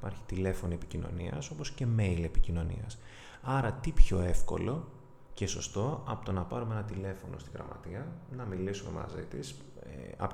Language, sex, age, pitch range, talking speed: Greek, male, 30-49, 90-120 Hz, 155 wpm